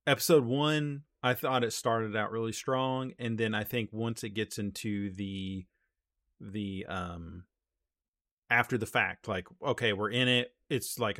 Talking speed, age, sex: 160 wpm, 30-49, male